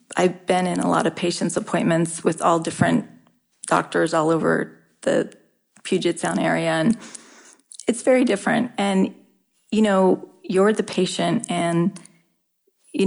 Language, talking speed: English, 140 wpm